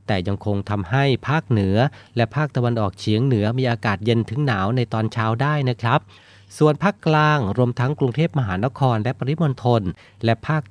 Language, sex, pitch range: Thai, male, 100-125 Hz